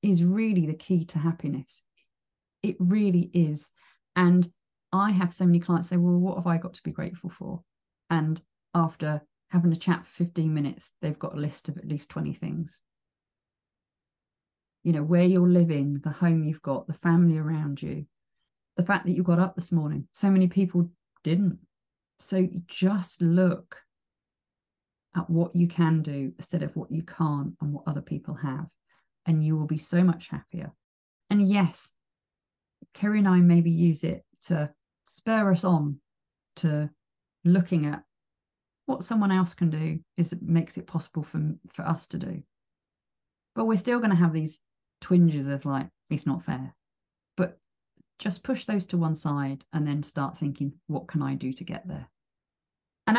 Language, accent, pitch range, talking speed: English, British, 155-180 Hz, 175 wpm